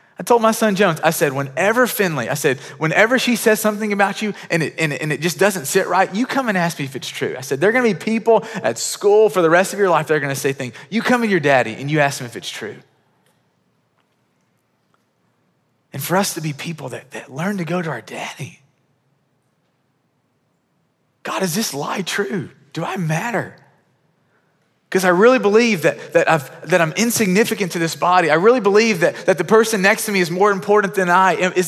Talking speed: 225 wpm